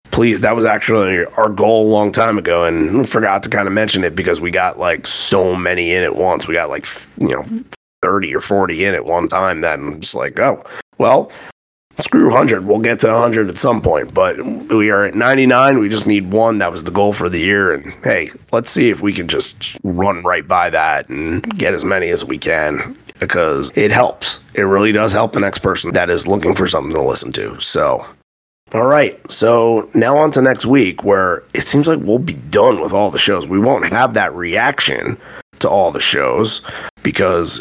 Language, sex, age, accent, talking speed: English, male, 30-49, American, 220 wpm